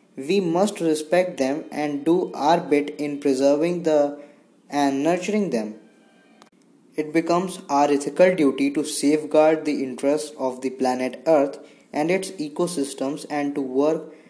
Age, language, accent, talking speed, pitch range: 20-39, English, Indian, 140 wpm, 135-155 Hz